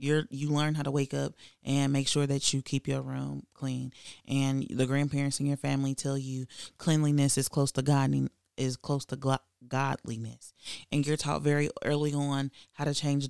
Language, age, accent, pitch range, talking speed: English, 30-49, American, 135-150 Hz, 190 wpm